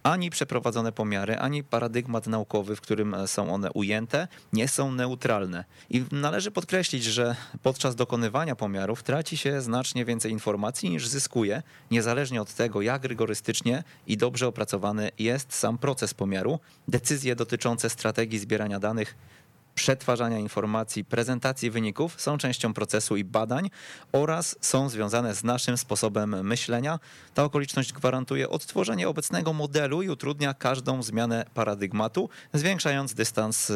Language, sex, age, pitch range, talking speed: Polish, male, 20-39, 105-135 Hz, 130 wpm